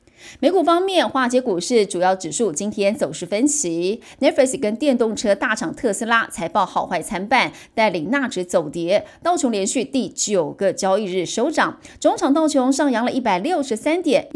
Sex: female